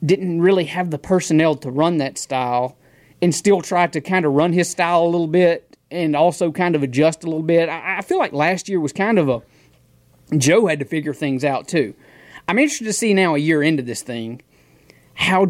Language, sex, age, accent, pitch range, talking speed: English, male, 30-49, American, 135-170 Hz, 220 wpm